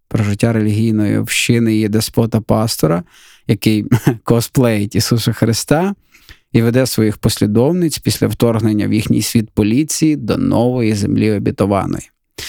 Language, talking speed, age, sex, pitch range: Ukrainian, 115 wpm, 20-39, male, 110-120 Hz